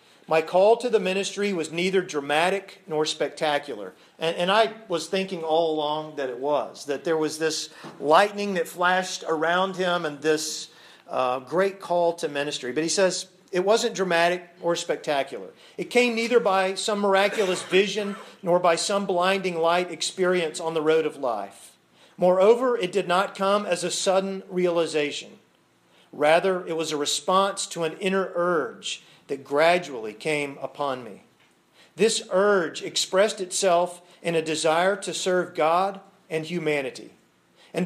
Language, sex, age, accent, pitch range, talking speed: English, male, 40-59, American, 155-190 Hz, 155 wpm